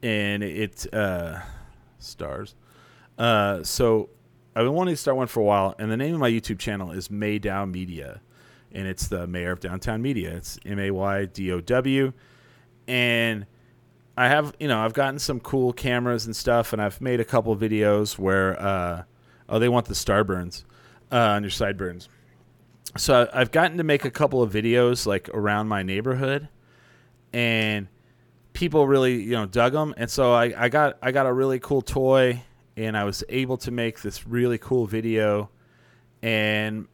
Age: 30-49